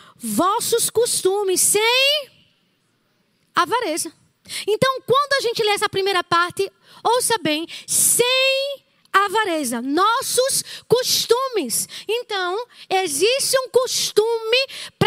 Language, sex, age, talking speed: Portuguese, female, 20-39, 90 wpm